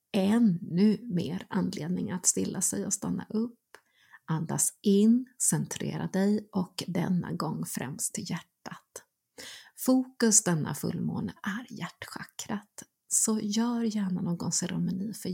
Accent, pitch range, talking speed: native, 180-215 Hz, 115 wpm